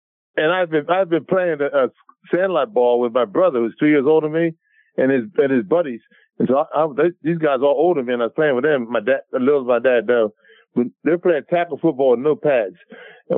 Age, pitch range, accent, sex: 50-69, 135-175 Hz, American, male